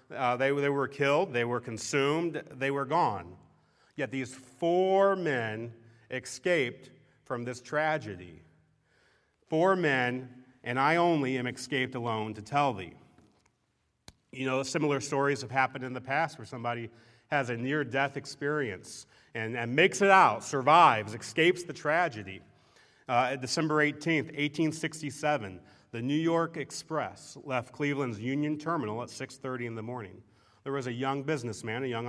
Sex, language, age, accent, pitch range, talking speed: male, English, 40-59, American, 115-145 Hz, 145 wpm